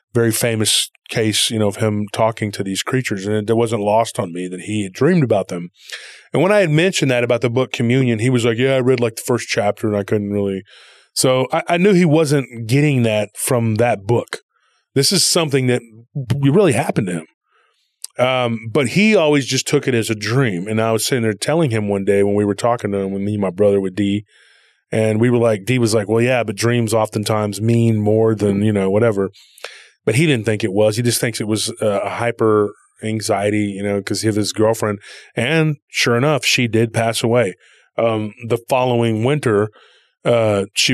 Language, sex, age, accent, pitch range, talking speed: English, male, 20-39, American, 105-120 Hz, 220 wpm